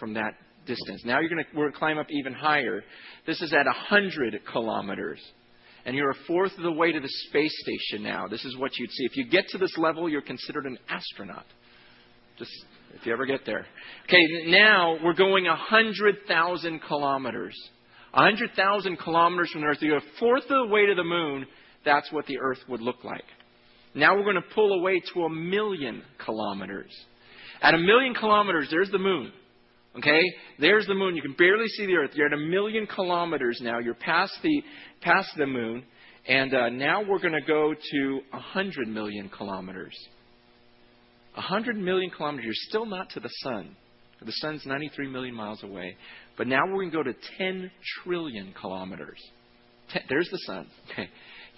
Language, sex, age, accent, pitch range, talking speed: English, male, 40-59, American, 130-185 Hz, 190 wpm